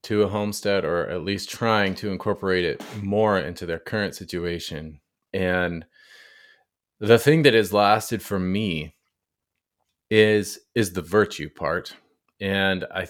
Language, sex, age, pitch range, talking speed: English, male, 30-49, 95-115 Hz, 135 wpm